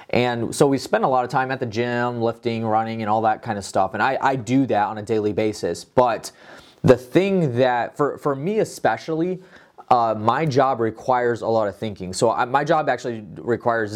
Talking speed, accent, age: 210 wpm, American, 20-39